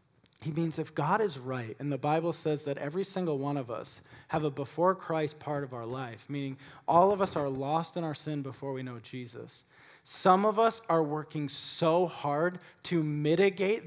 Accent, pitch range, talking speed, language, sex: American, 150-235 Hz, 200 wpm, English, male